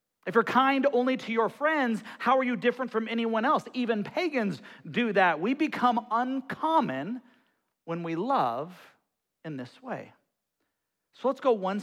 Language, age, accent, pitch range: English, 40-59, American, 205-275 Hz